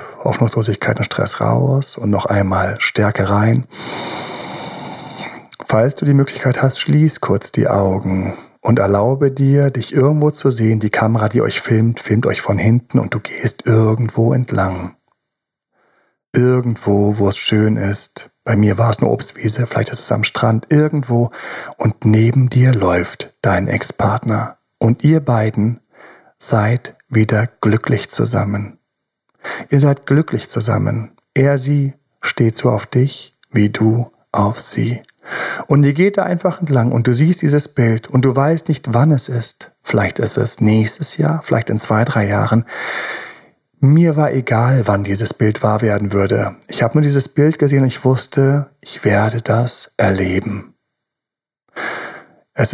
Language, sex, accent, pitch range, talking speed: German, male, German, 110-140 Hz, 150 wpm